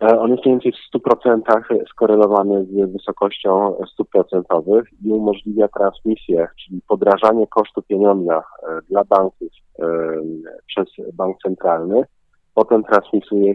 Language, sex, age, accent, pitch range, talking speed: Polish, male, 40-59, native, 95-110 Hz, 115 wpm